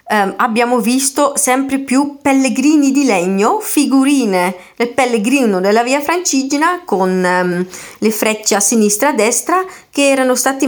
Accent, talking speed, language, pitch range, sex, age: native, 150 wpm, Italian, 205-270 Hz, female, 30-49